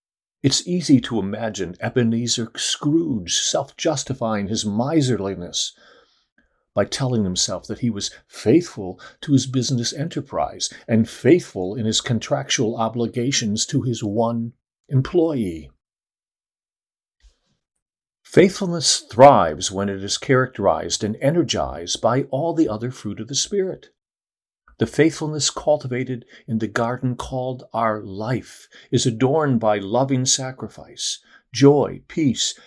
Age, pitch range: 50-69, 105-140 Hz